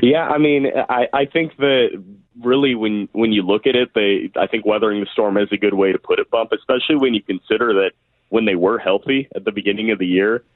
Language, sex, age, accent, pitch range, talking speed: English, male, 30-49, American, 100-120 Hz, 245 wpm